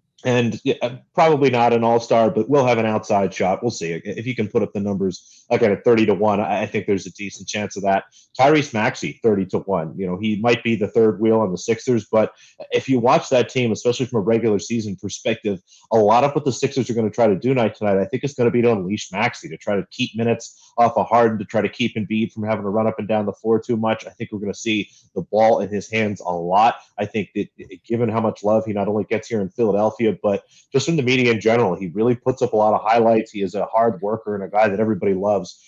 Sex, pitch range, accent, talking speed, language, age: male, 105-120 Hz, American, 275 wpm, English, 30-49